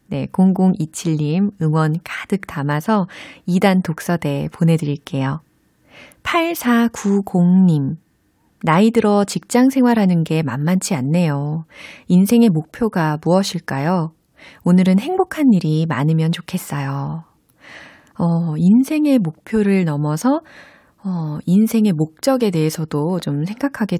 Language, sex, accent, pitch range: Korean, female, native, 160-210 Hz